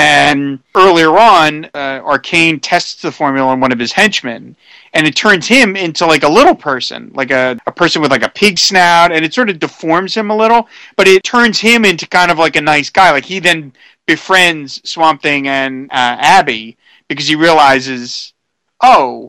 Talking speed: 195 wpm